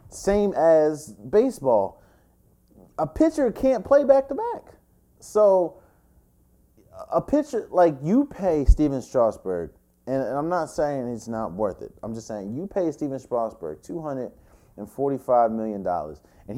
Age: 30-49